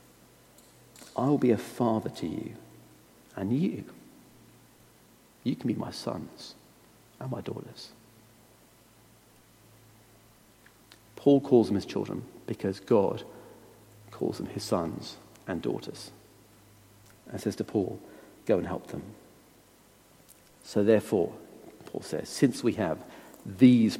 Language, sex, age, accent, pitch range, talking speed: English, male, 50-69, British, 110-135 Hz, 115 wpm